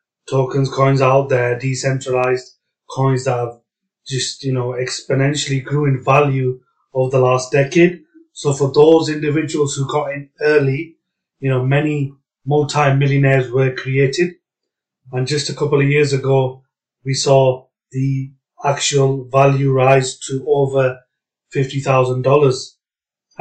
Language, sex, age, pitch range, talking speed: English, male, 30-49, 130-150 Hz, 125 wpm